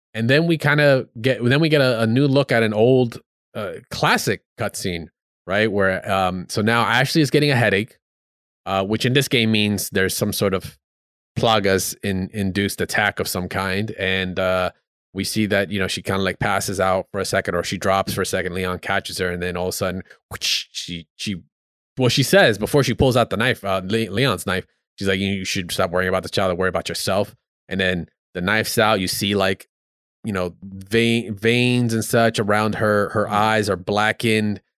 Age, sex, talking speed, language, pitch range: 20-39, male, 210 wpm, English, 95-115 Hz